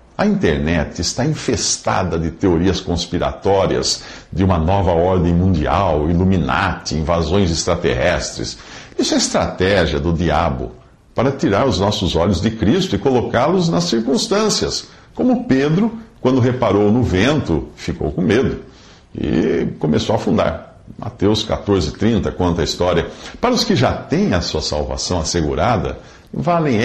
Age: 50-69